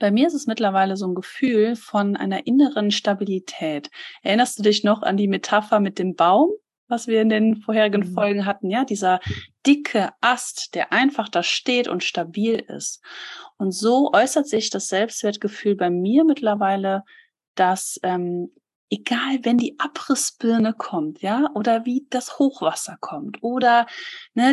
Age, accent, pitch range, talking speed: 30-49, German, 195-275 Hz, 155 wpm